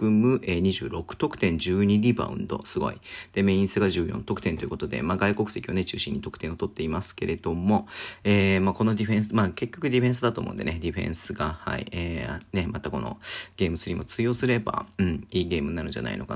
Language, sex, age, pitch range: Japanese, male, 40-59, 95-115 Hz